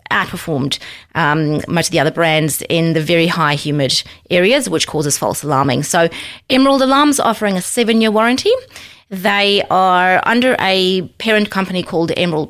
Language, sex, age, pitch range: English, female, 30-49, 170-210 Hz